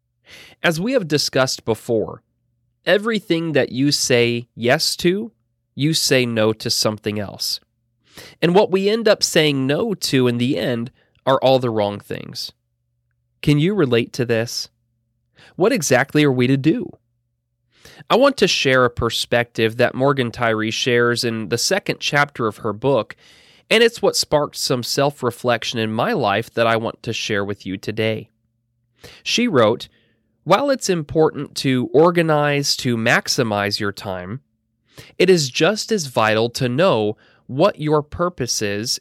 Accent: American